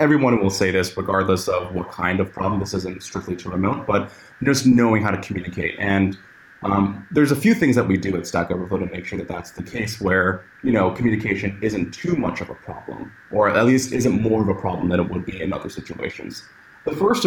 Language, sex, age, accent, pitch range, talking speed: English, male, 20-39, American, 95-115 Hz, 235 wpm